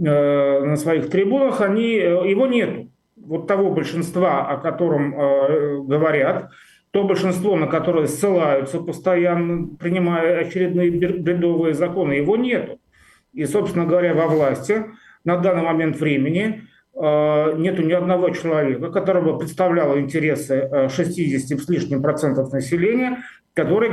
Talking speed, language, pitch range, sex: 125 wpm, Russian, 150-185 Hz, male